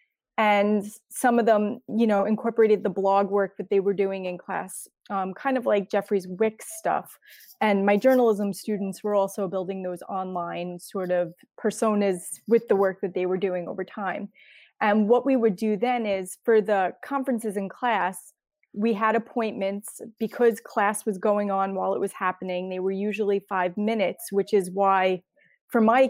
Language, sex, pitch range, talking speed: English, female, 185-215 Hz, 180 wpm